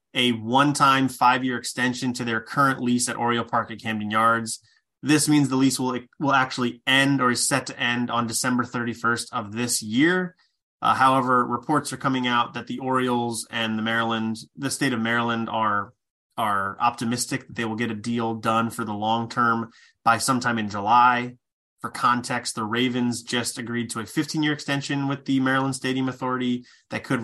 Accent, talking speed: American, 185 wpm